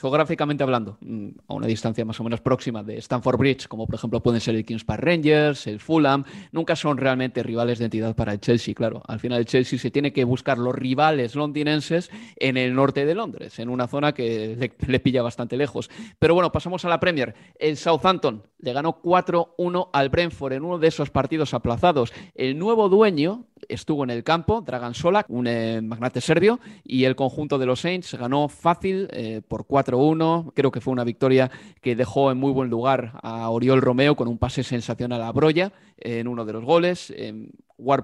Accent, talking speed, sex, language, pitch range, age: Spanish, 200 wpm, male, Spanish, 120-165 Hz, 30-49